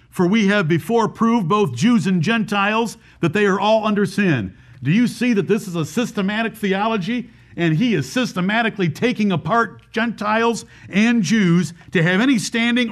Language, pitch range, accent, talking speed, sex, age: English, 160-210 Hz, American, 170 wpm, male, 50-69